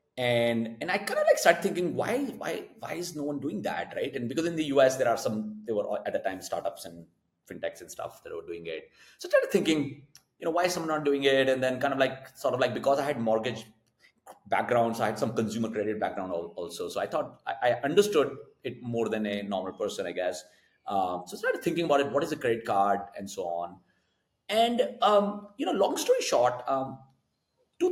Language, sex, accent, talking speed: English, male, Indian, 235 wpm